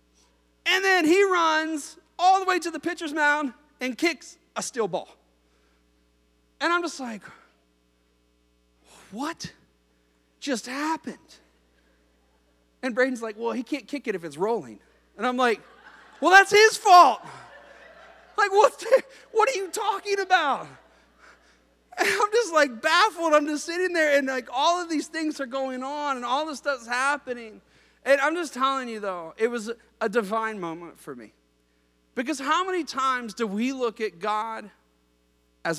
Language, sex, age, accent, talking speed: English, male, 30-49, American, 160 wpm